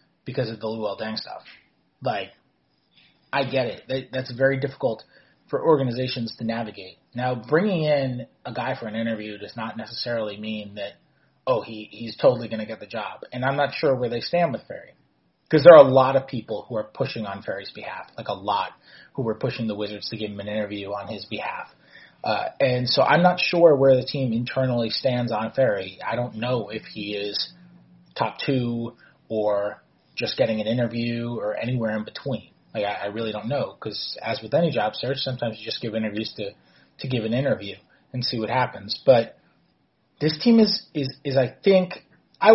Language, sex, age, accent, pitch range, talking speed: English, male, 30-49, American, 110-135 Hz, 200 wpm